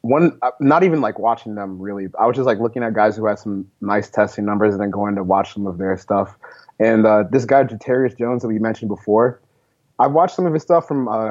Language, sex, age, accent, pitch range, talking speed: English, male, 20-39, American, 105-120 Hz, 255 wpm